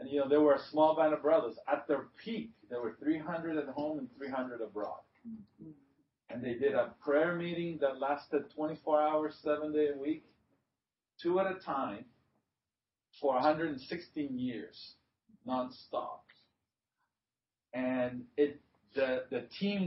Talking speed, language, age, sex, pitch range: 145 wpm, English, 50-69, male, 135-180 Hz